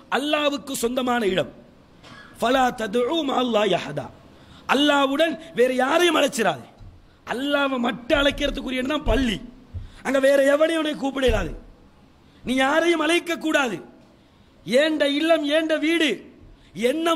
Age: 50-69